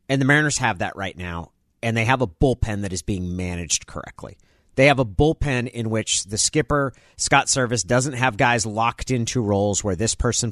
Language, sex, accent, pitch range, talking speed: English, male, American, 100-125 Hz, 205 wpm